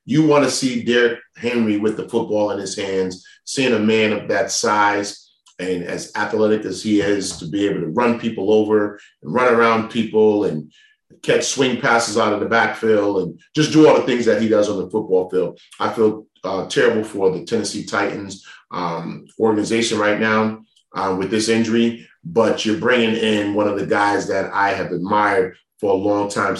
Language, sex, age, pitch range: English, male, 30-49, 95-110 Hz